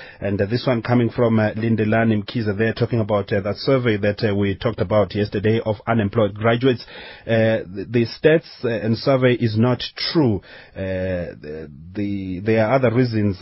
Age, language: 30-49, English